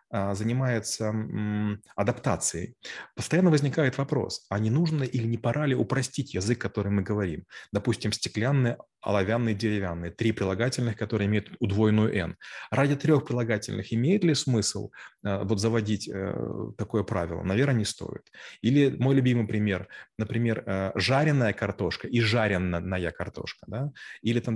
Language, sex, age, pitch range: Russian, male, 30-49, 105-130 Hz